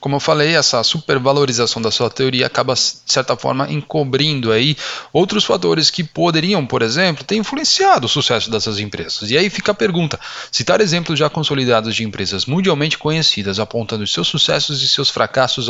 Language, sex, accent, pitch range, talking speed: Portuguese, male, Brazilian, 115-160 Hz, 170 wpm